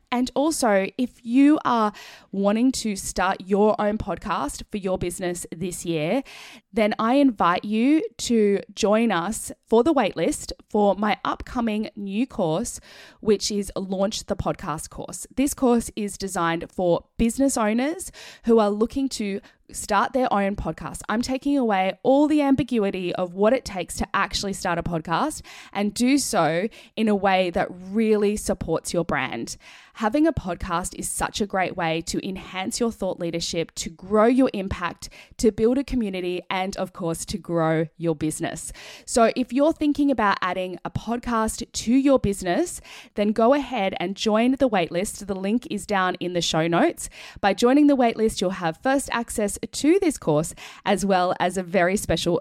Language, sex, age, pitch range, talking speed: English, female, 20-39, 185-245 Hz, 170 wpm